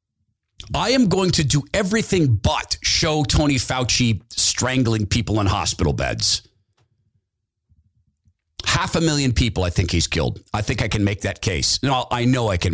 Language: English